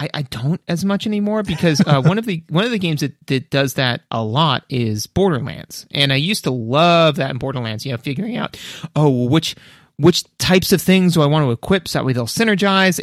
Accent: American